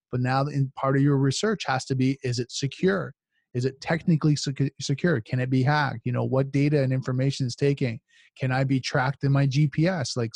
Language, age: English, 20-39